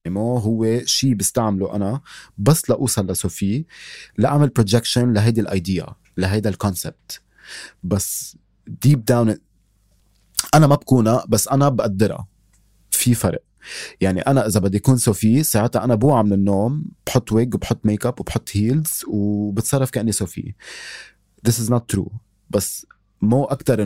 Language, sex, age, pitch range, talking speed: Arabic, male, 30-49, 100-125 Hz, 140 wpm